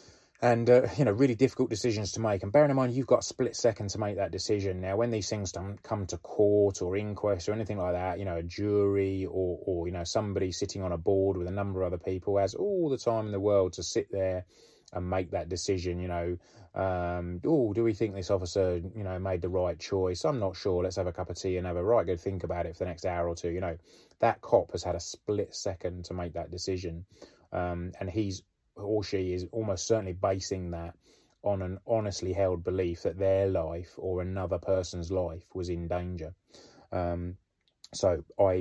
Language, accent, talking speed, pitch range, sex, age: English, British, 230 wpm, 90-100 Hz, male, 20-39